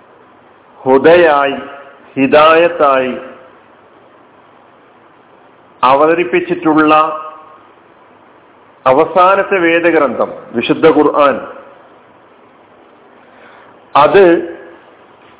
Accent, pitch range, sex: native, 165-205 Hz, male